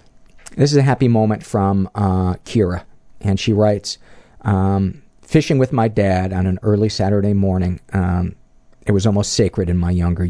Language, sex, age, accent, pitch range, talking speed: English, male, 40-59, American, 95-115 Hz, 170 wpm